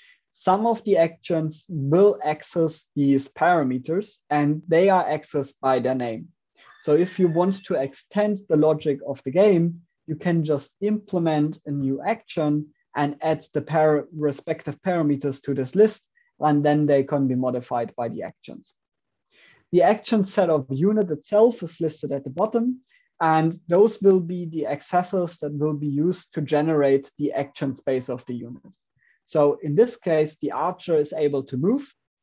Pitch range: 145-190 Hz